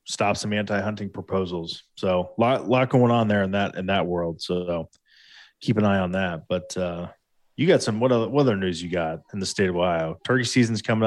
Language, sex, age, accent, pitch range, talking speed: English, male, 20-39, American, 95-125 Hz, 220 wpm